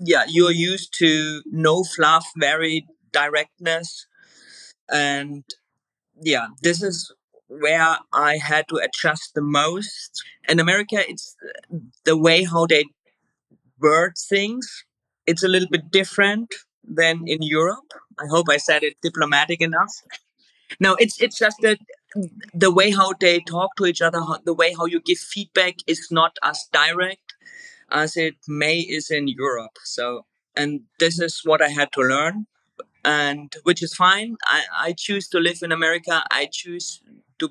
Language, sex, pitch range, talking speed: English, male, 150-185 Hz, 150 wpm